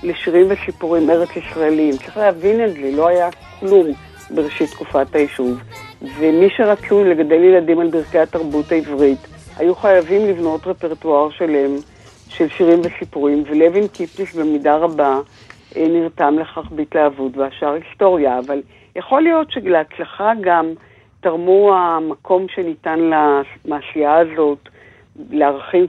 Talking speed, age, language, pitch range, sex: 115 wpm, 60-79, Hebrew, 145-185 Hz, female